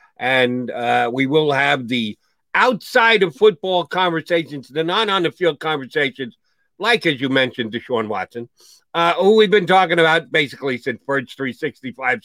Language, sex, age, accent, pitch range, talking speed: English, male, 50-69, American, 140-205 Hz, 130 wpm